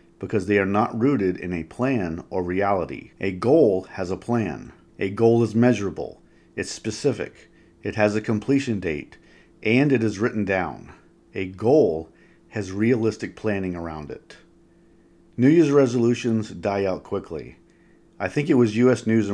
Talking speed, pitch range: 155 wpm, 95-120 Hz